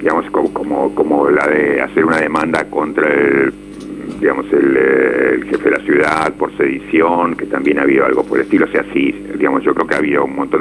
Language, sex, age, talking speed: Spanish, male, 70-89, 220 wpm